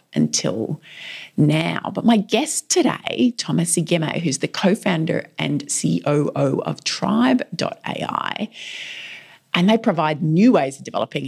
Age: 30-49